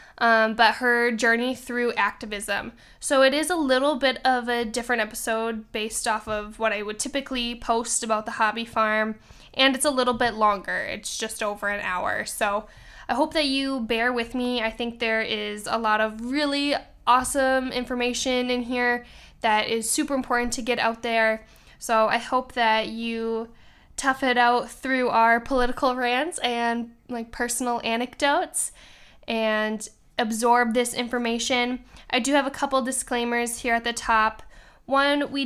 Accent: American